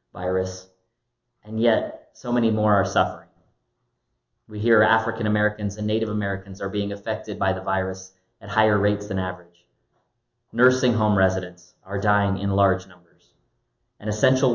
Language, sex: English, male